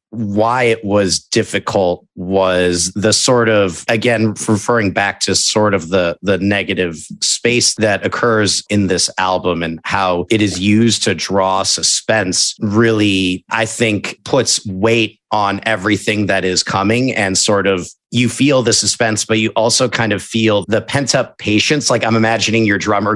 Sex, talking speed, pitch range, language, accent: male, 165 wpm, 100-115 Hz, English, American